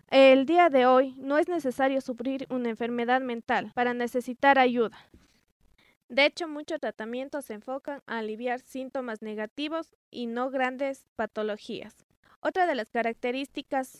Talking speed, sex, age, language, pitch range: 135 wpm, female, 20-39, Czech, 230-270 Hz